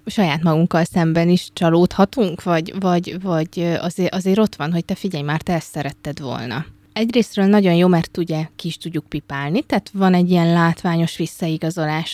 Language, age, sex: Hungarian, 20-39, female